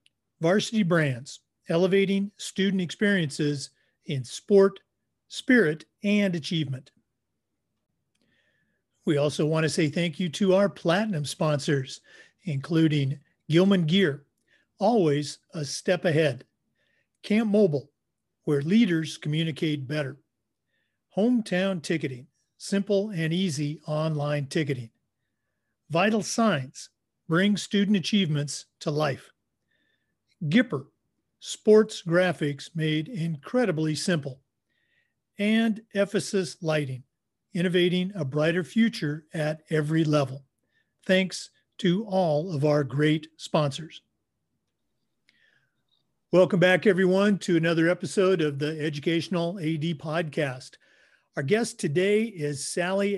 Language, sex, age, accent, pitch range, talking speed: English, male, 50-69, American, 150-190 Hz, 100 wpm